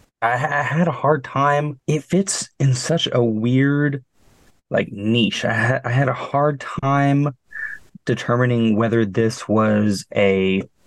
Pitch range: 105-130 Hz